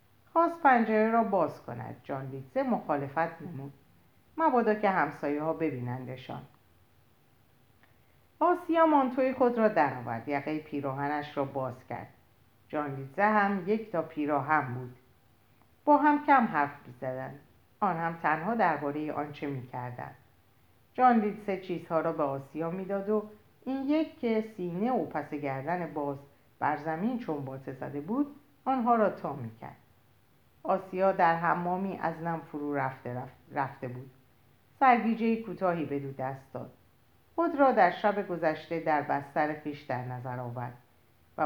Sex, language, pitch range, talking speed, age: female, Persian, 135-205 Hz, 135 wpm, 50-69